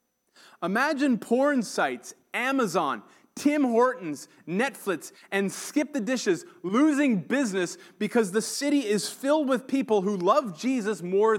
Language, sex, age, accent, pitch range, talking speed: English, male, 30-49, American, 175-260 Hz, 125 wpm